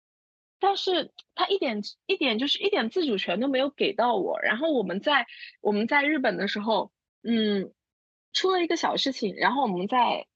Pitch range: 210-290 Hz